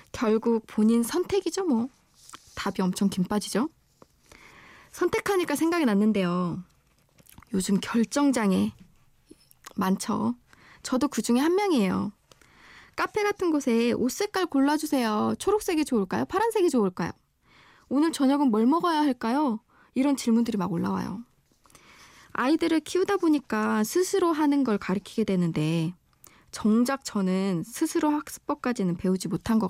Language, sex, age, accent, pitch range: Korean, female, 20-39, native, 205-300 Hz